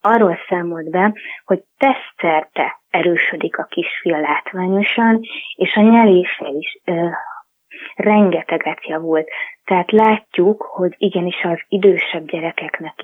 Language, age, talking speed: Hungarian, 20-39, 105 wpm